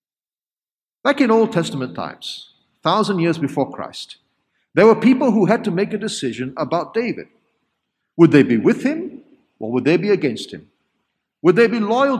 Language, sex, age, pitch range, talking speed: English, male, 50-69, 150-225 Hz, 170 wpm